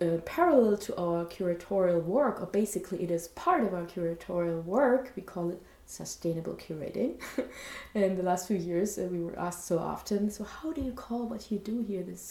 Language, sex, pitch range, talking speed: English, female, 170-205 Hz, 200 wpm